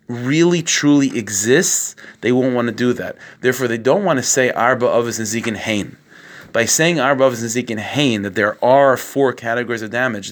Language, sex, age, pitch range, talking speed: English, male, 30-49, 105-135 Hz, 200 wpm